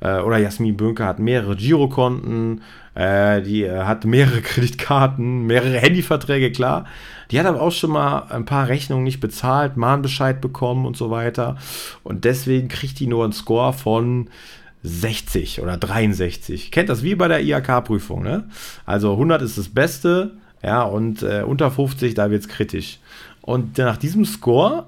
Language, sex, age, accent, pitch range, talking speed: German, male, 40-59, German, 105-130 Hz, 155 wpm